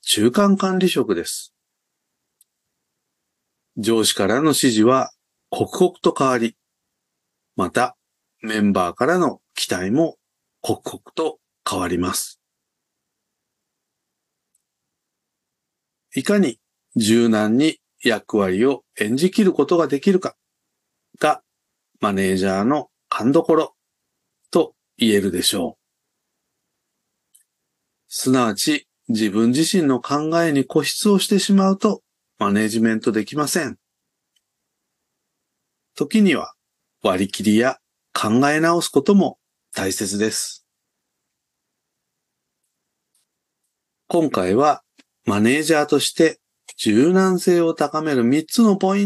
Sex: male